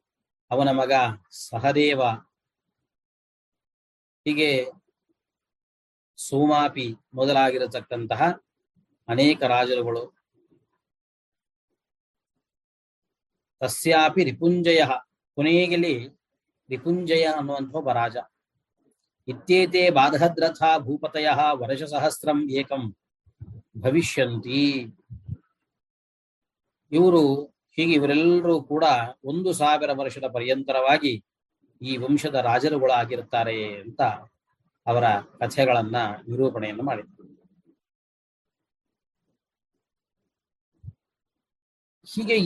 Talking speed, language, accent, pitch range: 50 wpm, Kannada, native, 125-165 Hz